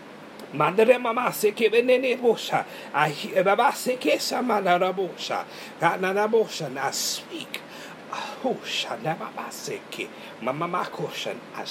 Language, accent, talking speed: English, American, 90 wpm